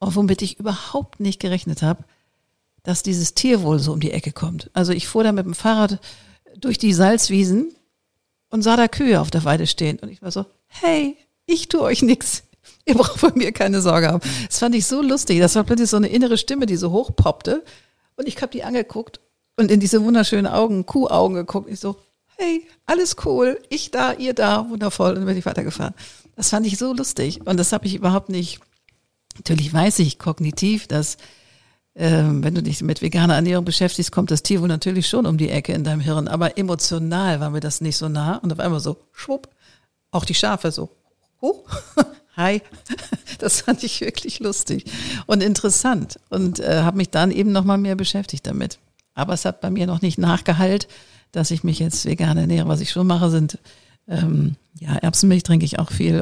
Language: German